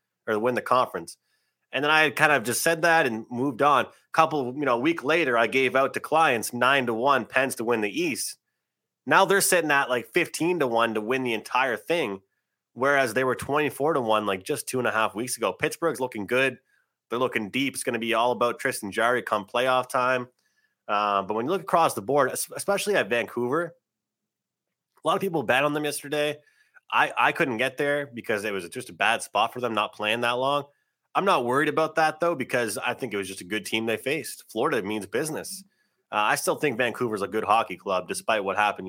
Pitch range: 110-150 Hz